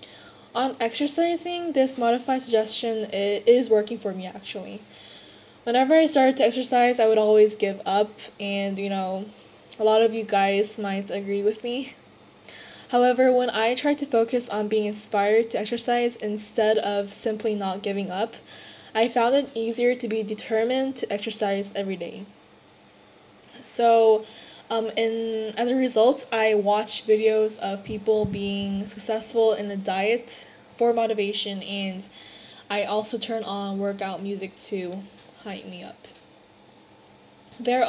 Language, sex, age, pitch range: Korean, female, 10-29, 205-235 Hz